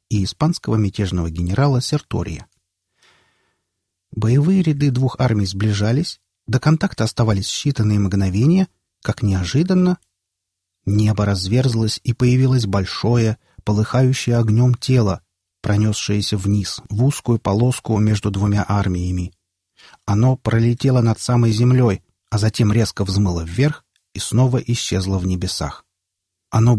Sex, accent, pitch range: male, native, 95-130 Hz